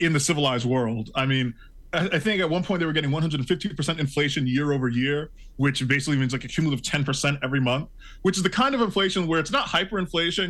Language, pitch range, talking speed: English, 135-185 Hz, 215 wpm